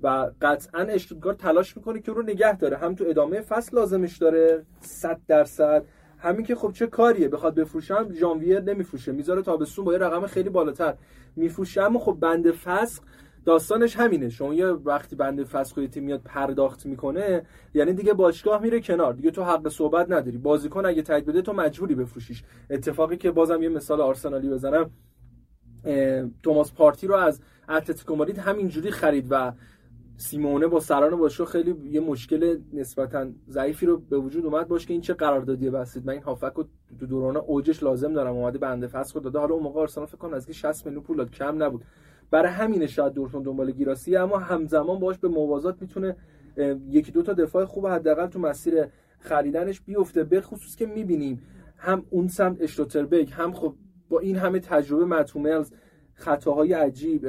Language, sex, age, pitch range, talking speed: Persian, male, 30-49, 140-180 Hz, 170 wpm